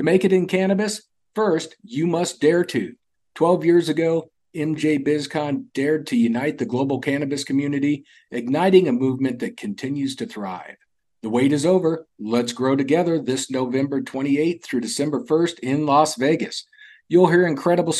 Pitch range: 135-175 Hz